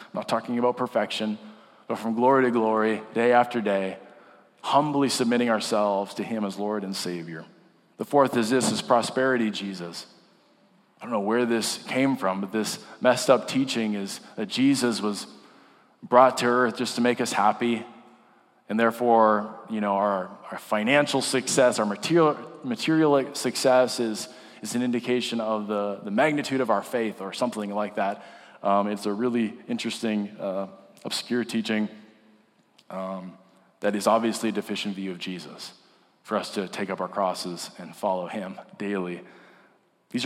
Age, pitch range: 20-39, 100-120 Hz